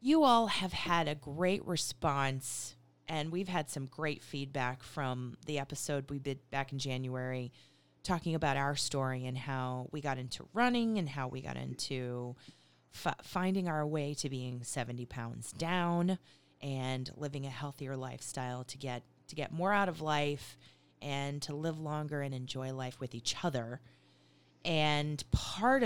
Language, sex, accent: English, female, American